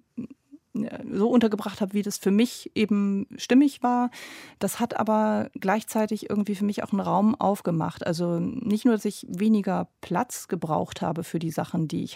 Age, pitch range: 40-59, 170-215 Hz